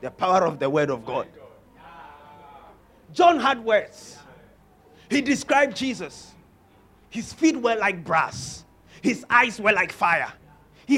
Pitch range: 170-285 Hz